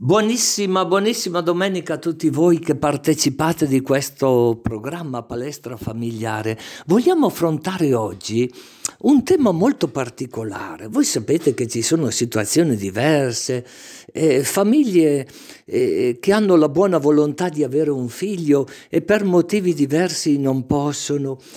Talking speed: 125 wpm